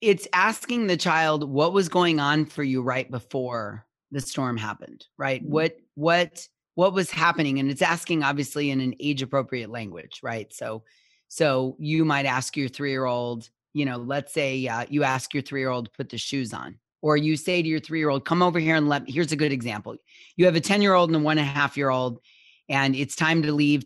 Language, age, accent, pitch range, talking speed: English, 30-49, American, 130-165 Hz, 220 wpm